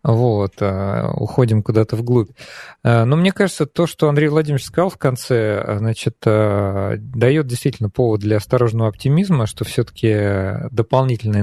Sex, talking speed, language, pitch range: male, 130 wpm, Russian, 110-130 Hz